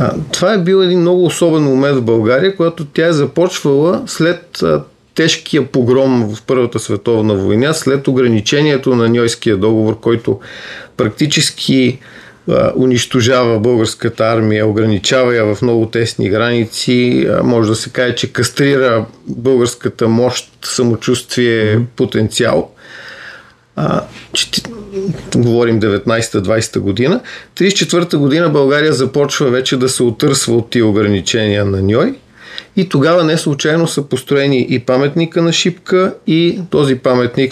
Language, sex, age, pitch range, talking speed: Bulgarian, male, 40-59, 115-150 Hz, 120 wpm